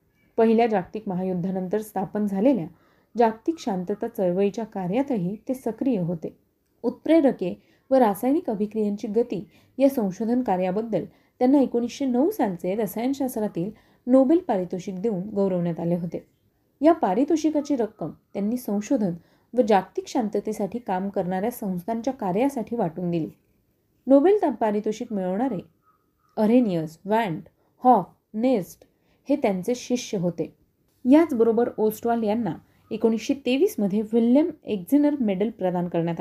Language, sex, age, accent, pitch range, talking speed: Marathi, female, 30-49, native, 185-250 Hz, 110 wpm